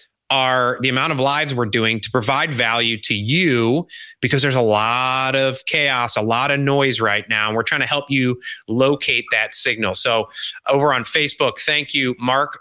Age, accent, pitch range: 30-49, American, 120-170 Hz